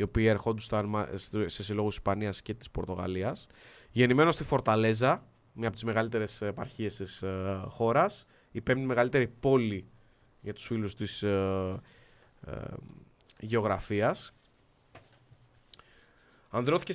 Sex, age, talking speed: male, 20-39, 110 wpm